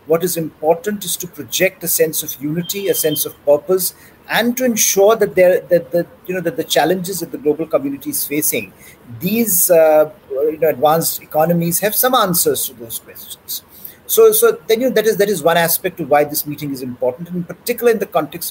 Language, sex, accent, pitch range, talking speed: English, male, Indian, 150-185 Hz, 180 wpm